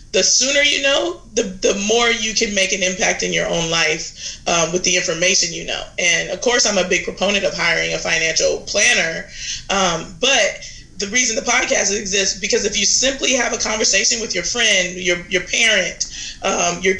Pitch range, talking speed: 180-225 Hz, 200 wpm